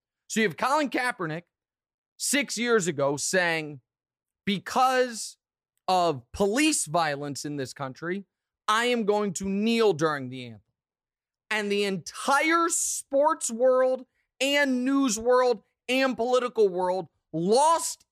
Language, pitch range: English, 200-295 Hz